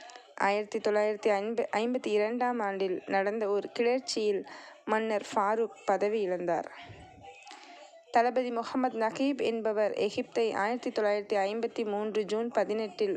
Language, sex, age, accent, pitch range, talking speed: Tamil, female, 20-39, native, 195-245 Hz, 90 wpm